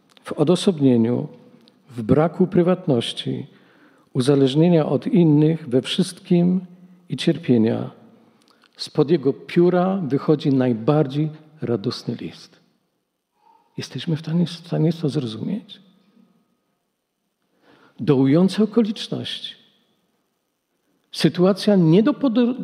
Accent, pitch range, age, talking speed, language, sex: native, 155-220 Hz, 50-69, 85 wpm, Polish, male